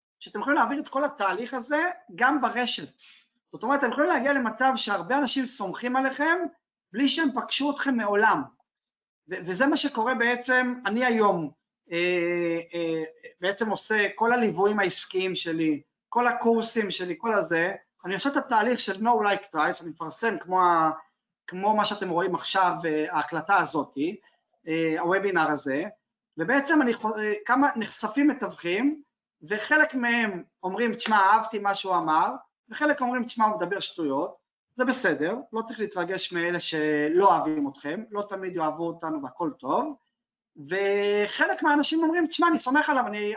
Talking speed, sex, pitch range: 145 wpm, male, 180-255 Hz